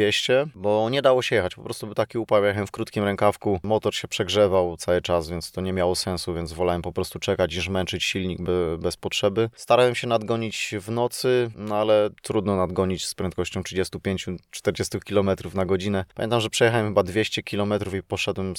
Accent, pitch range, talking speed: native, 90-105 Hz, 180 wpm